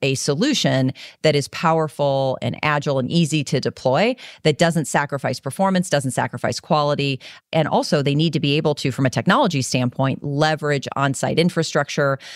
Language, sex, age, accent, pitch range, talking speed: English, female, 40-59, American, 135-165 Hz, 160 wpm